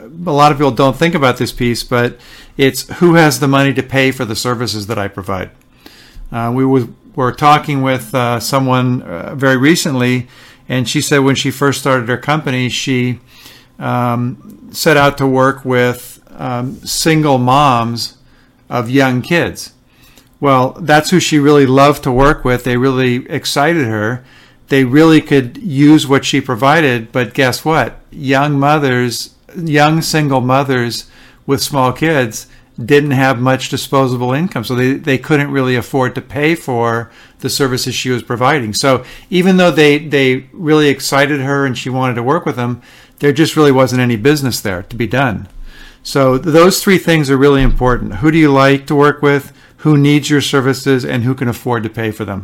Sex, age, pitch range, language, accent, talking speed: male, 50-69, 125-145 Hz, English, American, 180 wpm